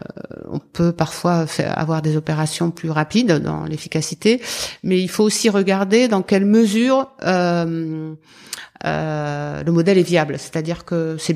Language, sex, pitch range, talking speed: French, female, 160-195 Hz, 145 wpm